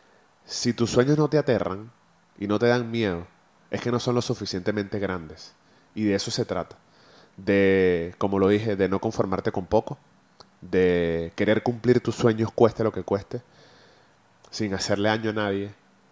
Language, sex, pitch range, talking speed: Spanish, male, 95-120 Hz, 170 wpm